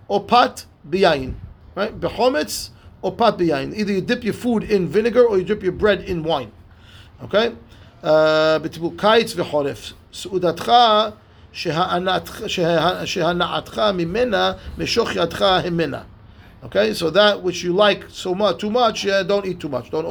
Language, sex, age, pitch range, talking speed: English, male, 40-59, 155-205 Hz, 135 wpm